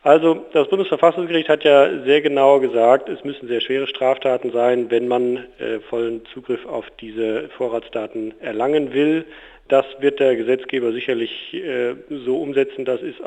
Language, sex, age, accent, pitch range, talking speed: German, male, 40-59, German, 120-140 Hz, 155 wpm